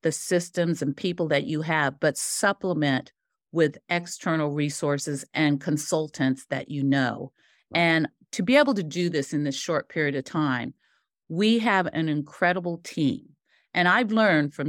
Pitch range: 145-190 Hz